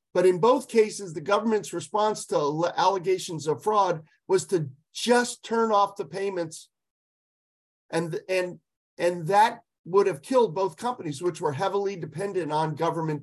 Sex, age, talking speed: male, 50-69, 150 wpm